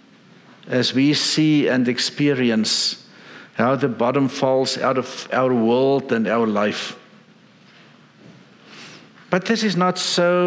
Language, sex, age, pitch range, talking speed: English, male, 60-79, 135-190 Hz, 120 wpm